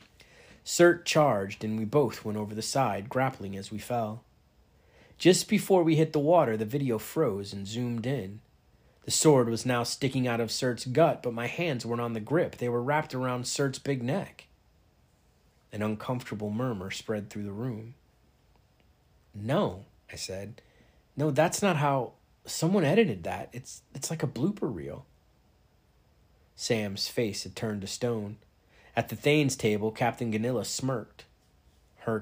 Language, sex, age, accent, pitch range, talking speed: English, male, 30-49, American, 105-130 Hz, 155 wpm